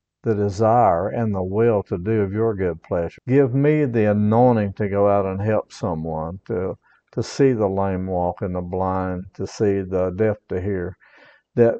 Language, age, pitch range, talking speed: English, 60-79, 100-130 Hz, 190 wpm